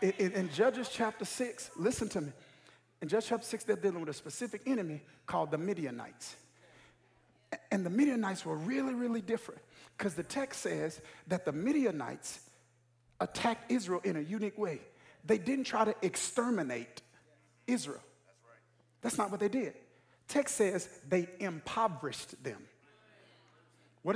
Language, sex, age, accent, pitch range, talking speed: English, male, 50-69, American, 180-260 Hz, 145 wpm